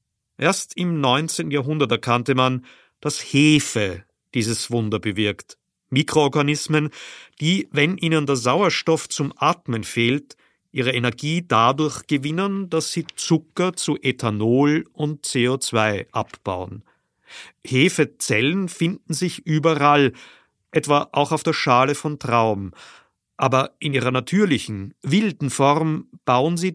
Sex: male